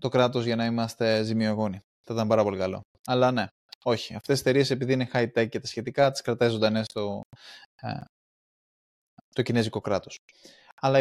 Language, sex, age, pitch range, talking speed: Greek, male, 20-39, 110-130 Hz, 180 wpm